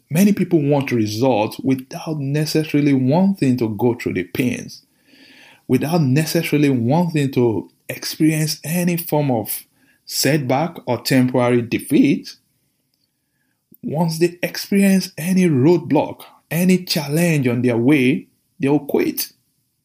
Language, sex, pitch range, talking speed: English, male, 125-155 Hz, 110 wpm